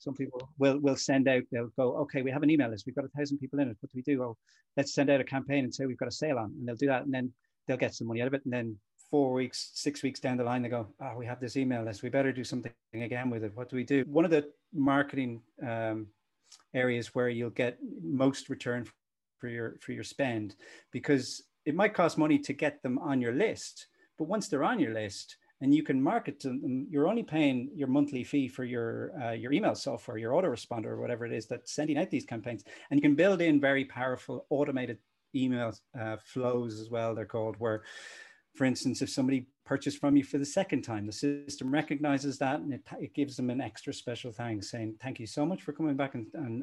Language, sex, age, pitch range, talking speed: English, male, 30-49, 120-145 Hz, 245 wpm